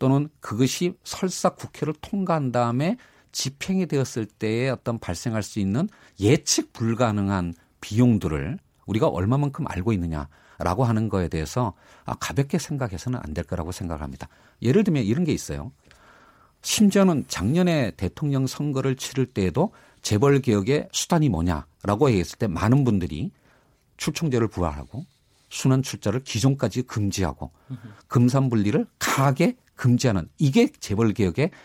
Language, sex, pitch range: Korean, male, 100-145 Hz